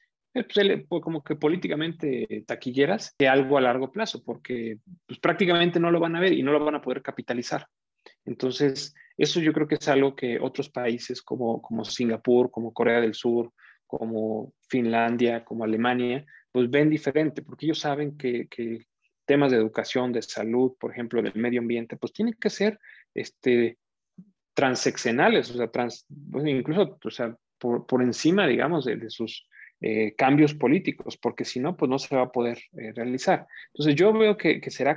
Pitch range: 115-145 Hz